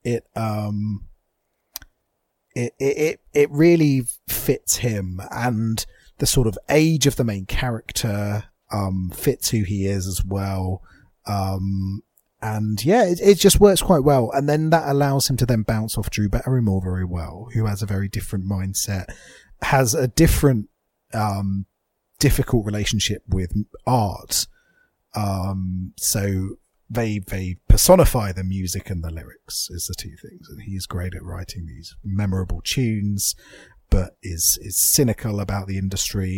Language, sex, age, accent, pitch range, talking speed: English, male, 30-49, British, 95-130 Hz, 150 wpm